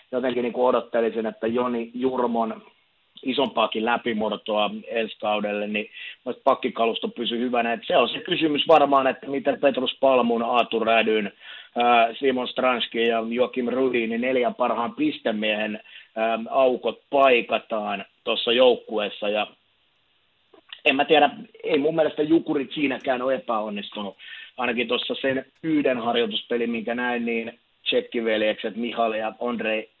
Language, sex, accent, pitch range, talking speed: Finnish, male, native, 115-135 Hz, 120 wpm